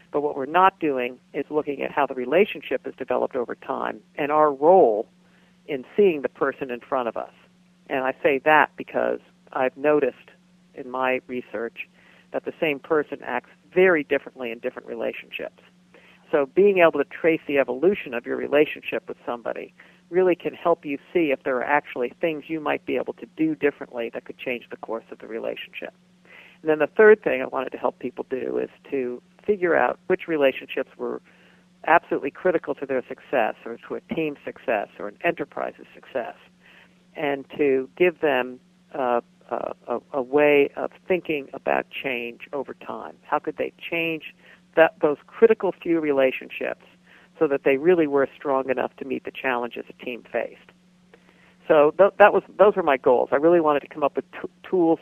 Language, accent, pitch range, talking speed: English, American, 135-180 Hz, 185 wpm